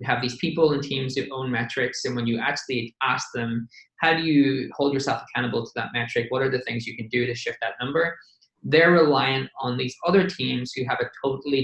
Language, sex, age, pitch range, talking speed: English, male, 20-39, 125-150 Hz, 230 wpm